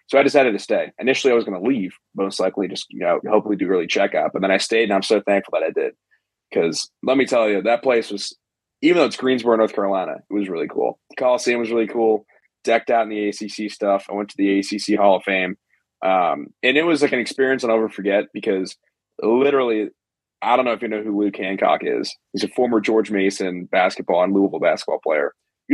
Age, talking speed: 30-49, 235 wpm